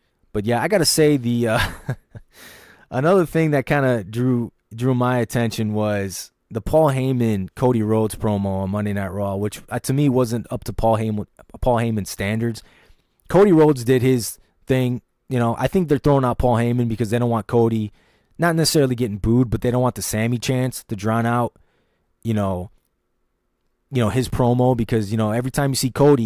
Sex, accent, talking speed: male, American, 200 wpm